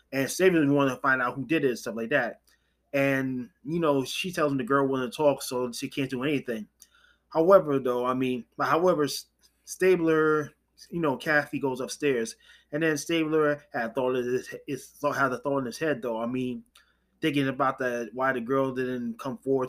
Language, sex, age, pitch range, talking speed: English, male, 20-39, 125-150 Hz, 200 wpm